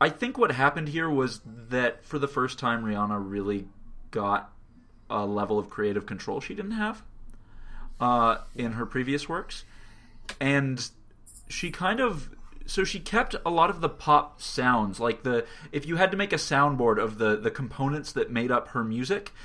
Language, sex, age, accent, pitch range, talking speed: English, male, 30-49, American, 115-145 Hz, 180 wpm